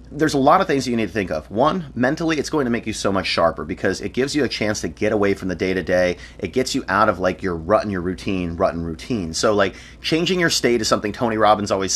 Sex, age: male, 30-49